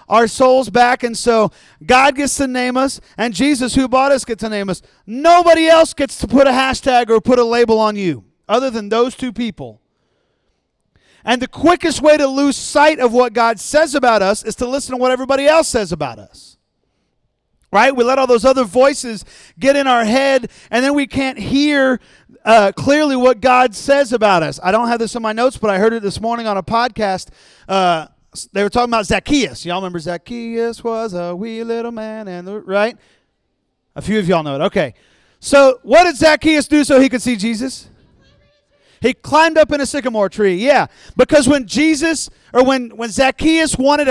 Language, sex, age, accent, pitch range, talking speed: English, male, 40-59, American, 215-275 Hz, 205 wpm